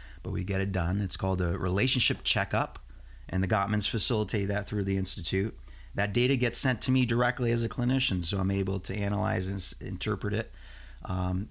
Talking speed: 200 wpm